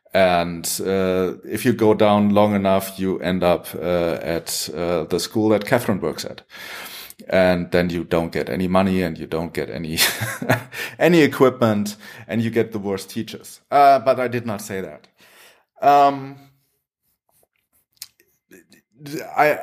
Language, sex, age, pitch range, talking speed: English, male, 30-49, 95-130 Hz, 150 wpm